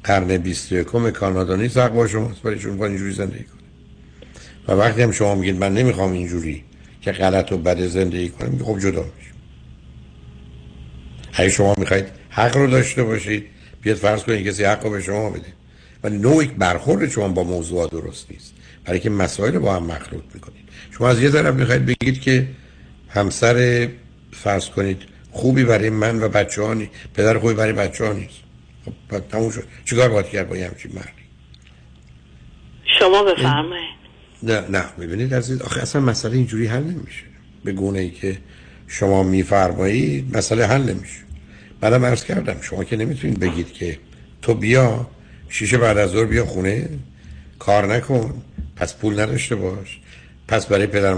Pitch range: 70-115 Hz